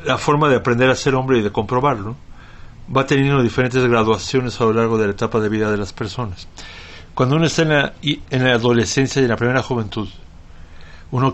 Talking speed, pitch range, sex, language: 205 wpm, 105-130 Hz, male, Spanish